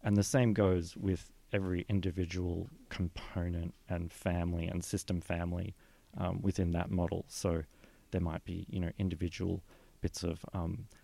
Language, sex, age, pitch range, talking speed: English, male, 30-49, 90-105 Hz, 145 wpm